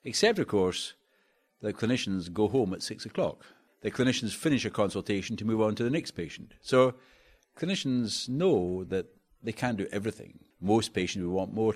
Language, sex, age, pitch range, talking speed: English, male, 60-79, 85-110 Hz, 175 wpm